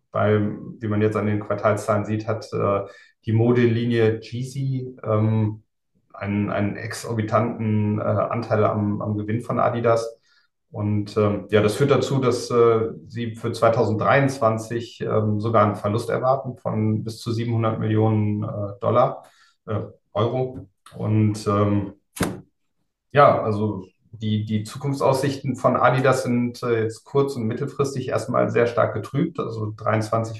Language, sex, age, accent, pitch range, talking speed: German, male, 30-49, German, 105-120 Hz, 140 wpm